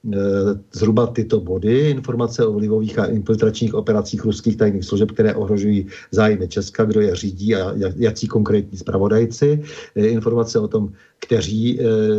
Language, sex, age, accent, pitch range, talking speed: Czech, male, 50-69, native, 100-120 Hz, 135 wpm